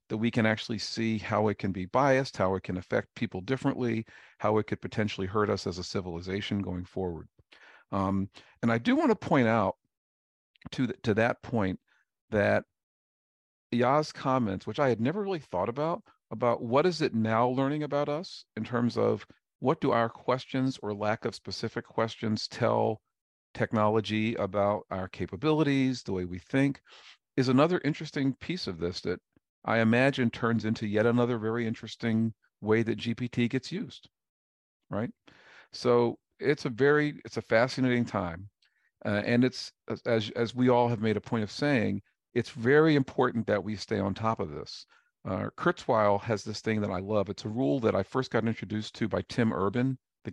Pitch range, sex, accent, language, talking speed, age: 105-130 Hz, male, American, English, 180 wpm, 50-69